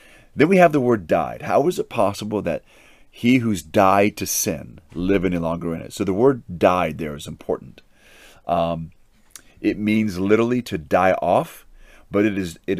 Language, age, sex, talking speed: English, 30-49, male, 185 wpm